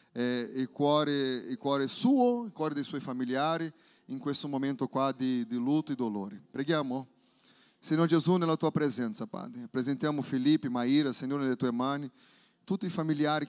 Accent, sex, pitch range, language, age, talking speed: Brazilian, male, 135-165 Hz, Italian, 30-49, 160 wpm